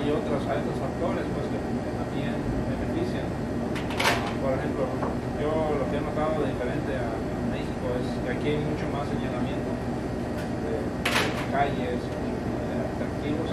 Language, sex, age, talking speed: English, male, 30-49, 140 wpm